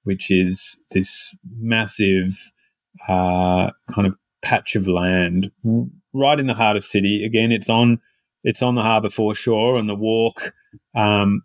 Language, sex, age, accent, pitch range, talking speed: English, male, 30-49, Australian, 95-115 Hz, 145 wpm